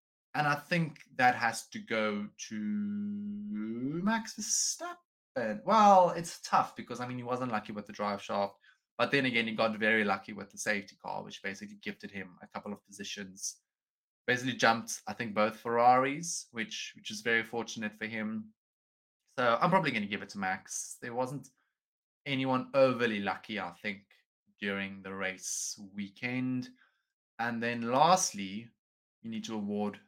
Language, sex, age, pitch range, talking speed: English, male, 20-39, 105-145 Hz, 165 wpm